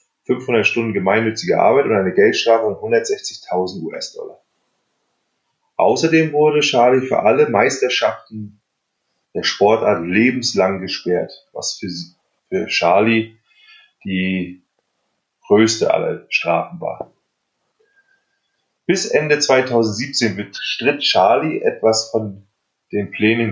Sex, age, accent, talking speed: male, 30-49, German, 95 wpm